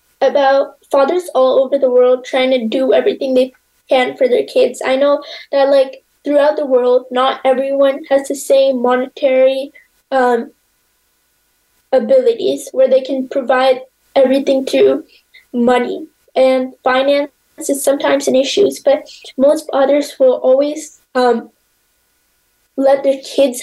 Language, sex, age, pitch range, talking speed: English, female, 10-29, 255-285 Hz, 130 wpm